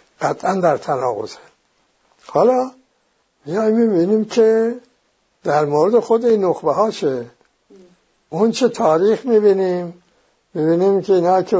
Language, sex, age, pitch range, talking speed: English, male, 60-79, 145-195 Hz, 115 wpm